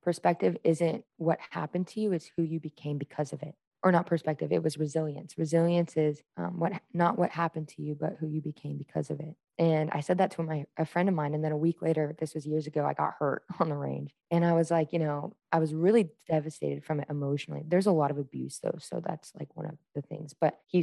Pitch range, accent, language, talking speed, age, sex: 155-185 Hz, American, English, 255 wpm, 20-39, female